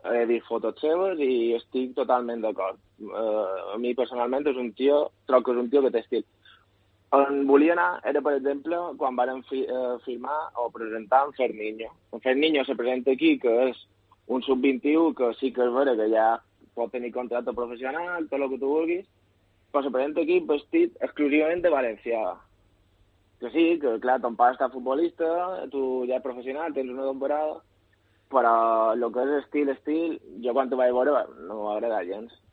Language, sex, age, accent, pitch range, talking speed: Spanish, male, 20-39, Spanish, 115-140 Hz, 180 wpm